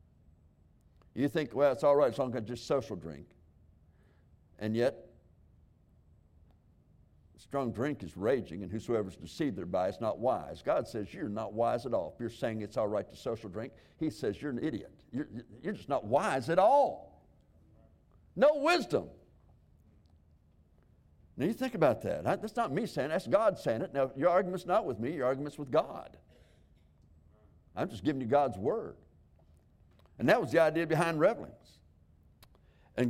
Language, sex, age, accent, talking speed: English, male, 60-79, American, 170 wpm